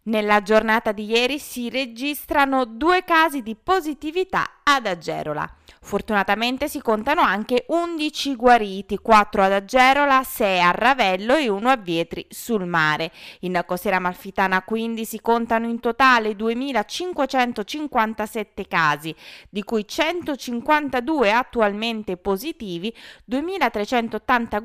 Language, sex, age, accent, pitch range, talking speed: Italian, female, 20-39, native, 200-285 Hz, 110 wpm